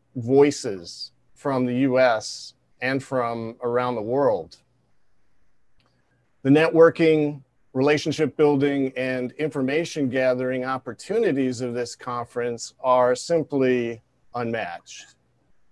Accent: American